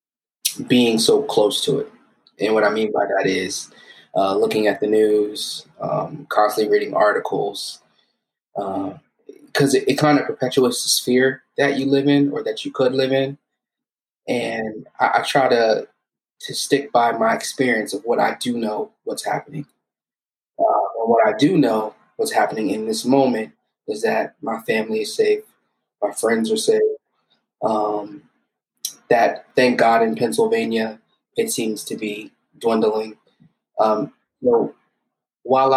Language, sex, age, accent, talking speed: English, male, 20-39, American, 155 wpm